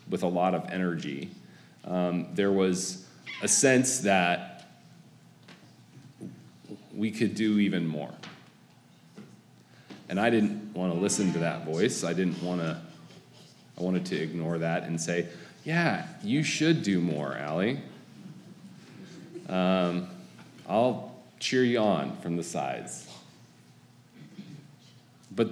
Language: English